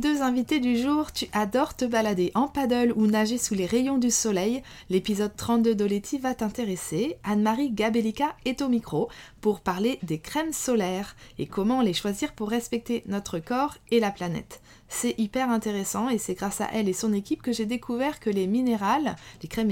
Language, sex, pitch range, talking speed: French, female, 195-250 Hz, 190 wpm